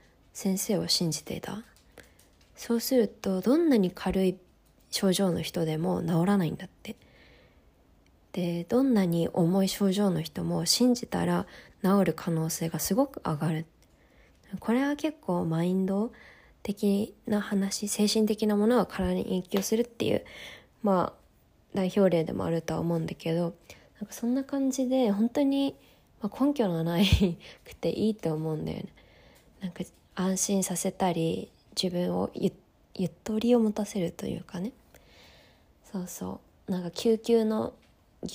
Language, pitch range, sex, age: Japanese, 165-215 Hz, female, 20-39